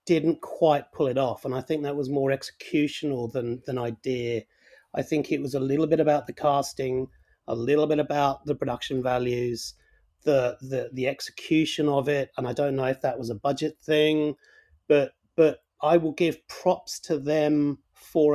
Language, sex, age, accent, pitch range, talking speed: English, male, 30-49, British, 130-150 Hz, 185 wpm